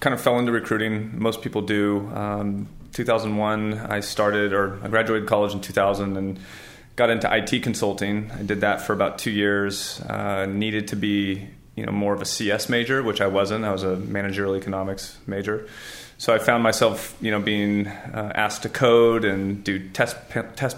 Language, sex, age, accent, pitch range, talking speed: English, male, 30-49, American, 95-105 Hz, 190 wpm